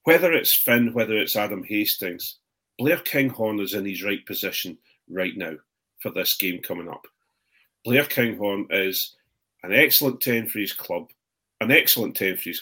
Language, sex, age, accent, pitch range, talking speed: English, male, 40-59, British, 95-115 Hz, 165 wpm